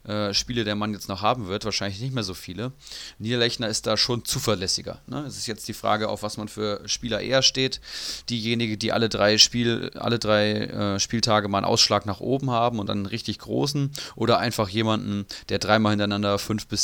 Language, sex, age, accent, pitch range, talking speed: German, male, 30-49, German, 100-120 Hz, 210 wpm